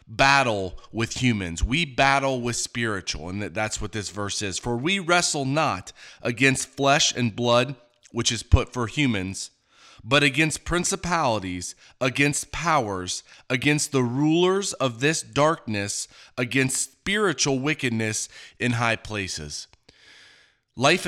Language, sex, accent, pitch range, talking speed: English, male, American, 115-155 Hz, 125 wpm